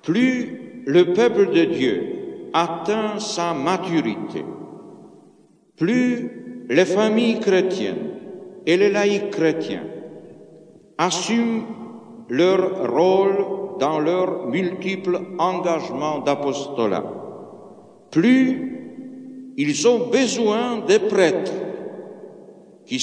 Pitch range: 170-255 Hz